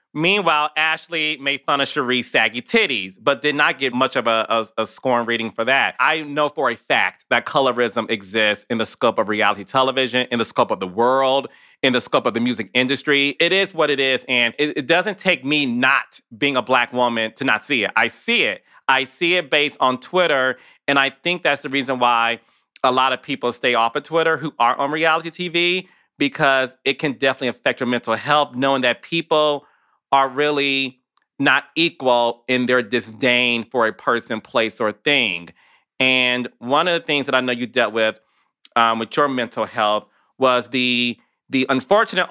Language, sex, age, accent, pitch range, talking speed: English, male, 30-49, American, 120-150 Hz, 200 wpm